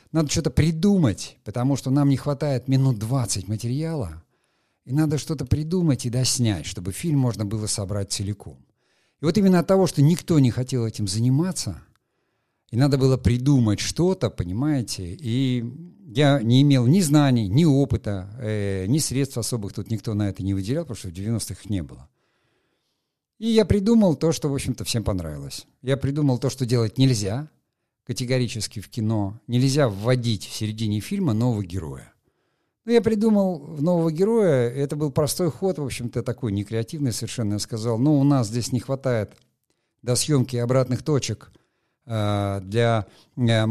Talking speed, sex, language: 165 wpm, male, Russian